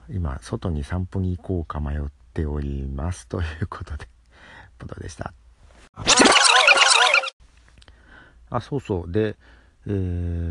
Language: Japanese